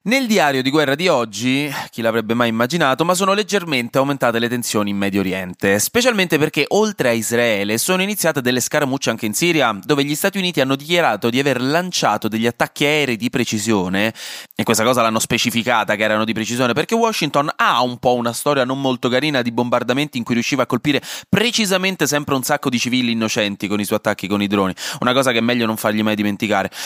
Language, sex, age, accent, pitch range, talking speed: Italian, male, 20-39, native, 110-150 Hz, 210 wpm